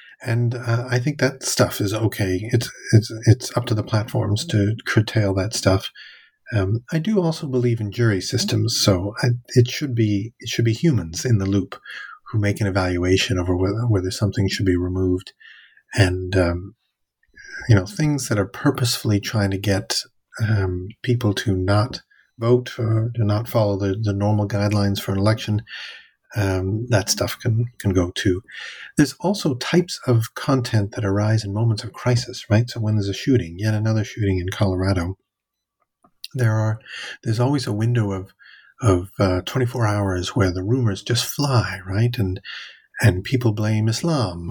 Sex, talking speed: male, 175 wpm